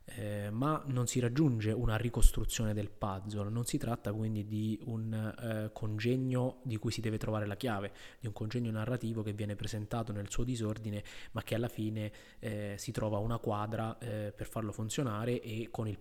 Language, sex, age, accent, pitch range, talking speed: Italian, male, 20-39, native, 105-120 Hz, 185 wpm